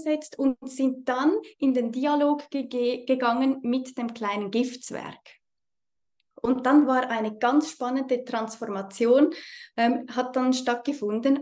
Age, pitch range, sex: 20-39, 240-295 Hz, female